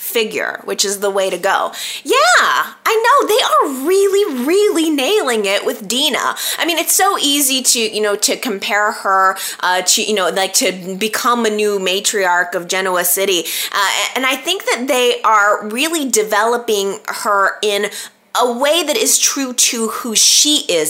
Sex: female